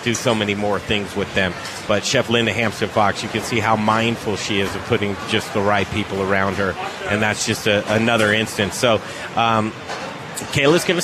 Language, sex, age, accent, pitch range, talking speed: English, male, 30-49, American, 110-140 Hz, 205 wpm